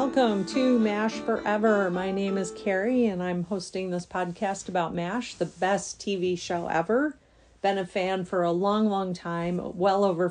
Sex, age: female, 40-59